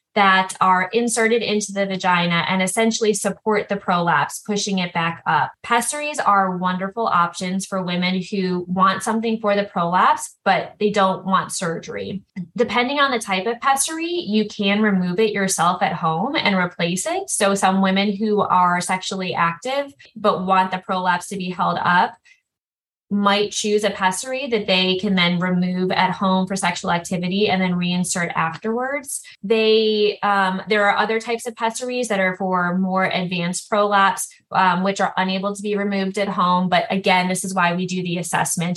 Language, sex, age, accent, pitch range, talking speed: English, female, 10-29, American, 175-210 Hz, 175 wpm